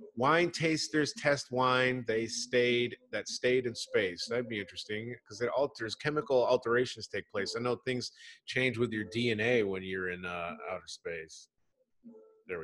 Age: 30-49